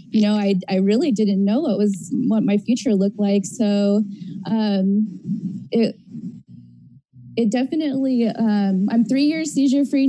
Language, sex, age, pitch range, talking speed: English, female, 20-39, 200-225 Hz, 150 wpm